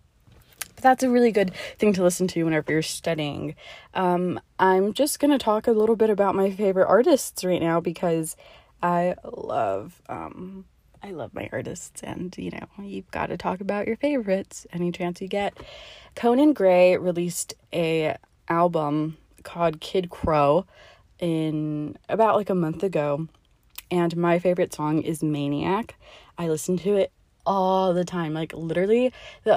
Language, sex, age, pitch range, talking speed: English, female, 20-39, 155-195 Hz, 155 wpm